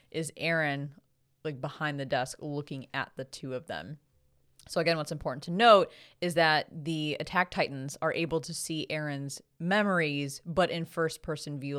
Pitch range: 140-170 Hz